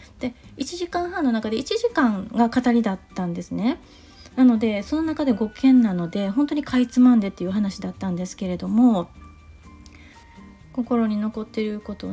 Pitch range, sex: 205-265 Hz, female